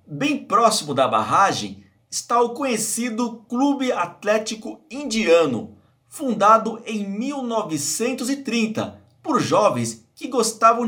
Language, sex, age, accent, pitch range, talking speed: Portuguese, male, 50-69, Brazilian, 200-260 Hz, 95 wpm